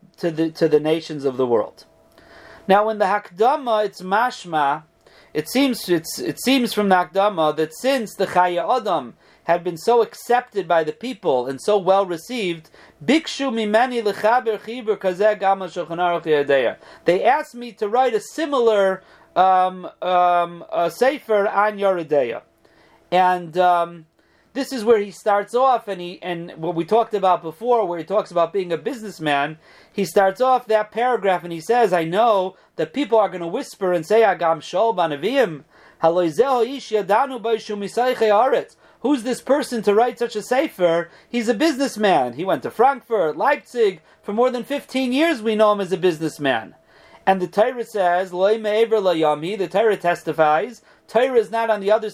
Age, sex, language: 40-59, male, English